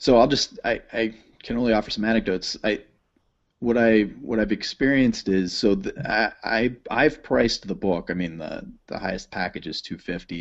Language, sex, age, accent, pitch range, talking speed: English, male, 30-49, American, 90-110 Hz, 190 wpm